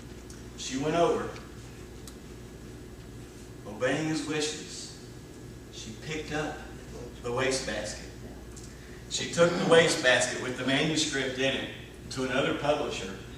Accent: American